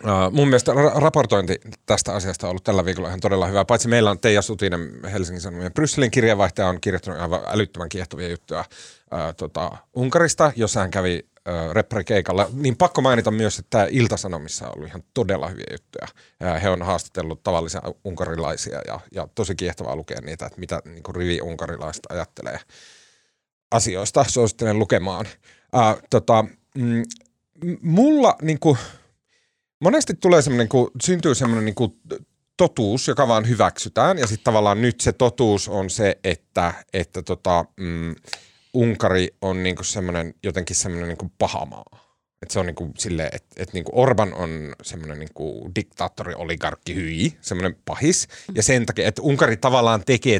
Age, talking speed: 30-49, 155 wpm